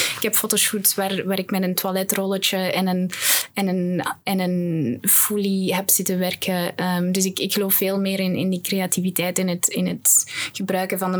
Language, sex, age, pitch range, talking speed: Dutch, female, 20-39, 185-215 Hz, 200 wpm